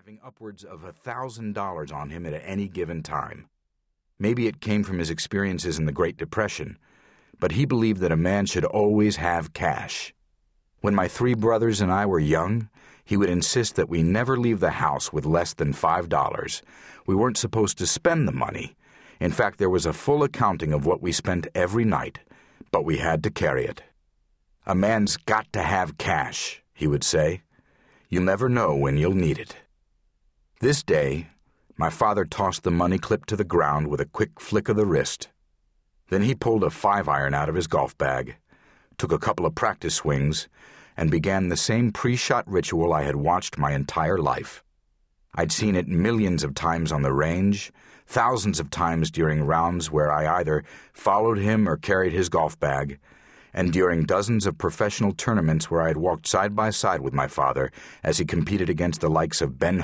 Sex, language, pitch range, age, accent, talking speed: male, English, 75-105 Hz, 50-69, American, 190 wpm